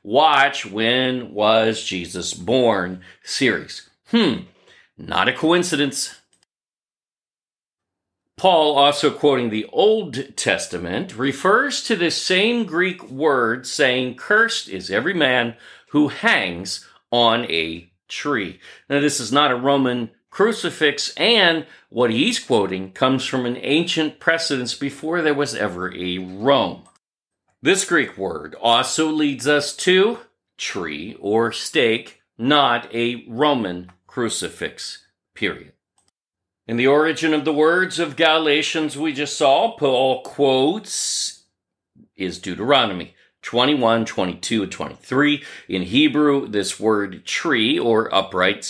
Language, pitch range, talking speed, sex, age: English, 115-155 Hz, 115 wpm, male, 40-59